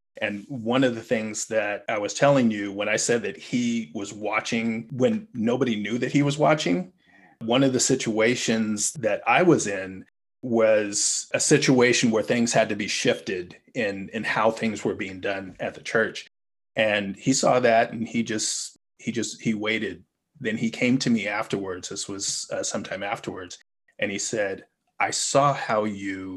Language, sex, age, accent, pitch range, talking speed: English, male, 30-49, American, 100-125 Hz, 180 wpm